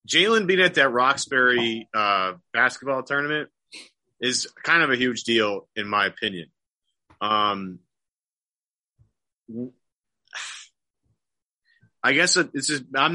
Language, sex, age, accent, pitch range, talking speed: English, male, 30-49, American, 105-125 Hz, 105 wpm